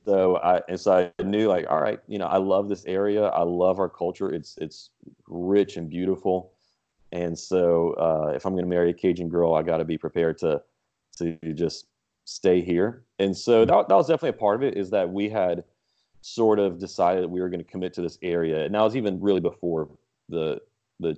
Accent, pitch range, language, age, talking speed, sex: American, 85-95 Hz, English, 30-49, 225 wpm, male